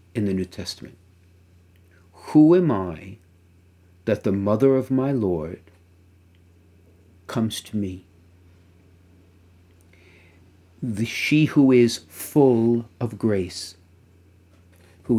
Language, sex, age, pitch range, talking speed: English, male, 50-69, 90-115 Hz, 95 wpm